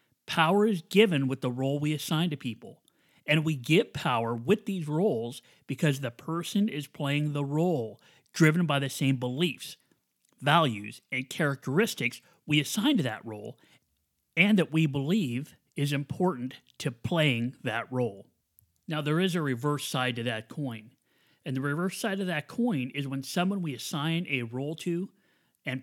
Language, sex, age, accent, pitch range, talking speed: English, male, 40-59, American, 130-175 Hz, 165 wpm